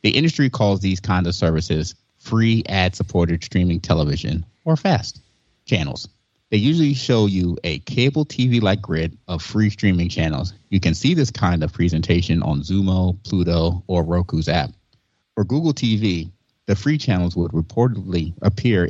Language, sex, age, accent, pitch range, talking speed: English, male, 30-49, American, 85-115 Hz, 150 wpm